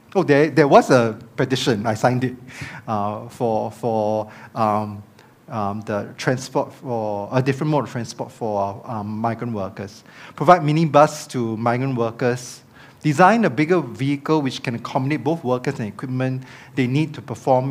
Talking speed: 150 wpm